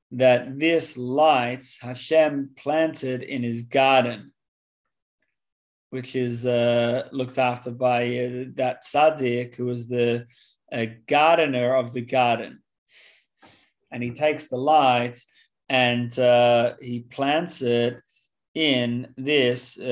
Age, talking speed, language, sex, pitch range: 30-49, 110 wpm, English, male, 120-130 Hz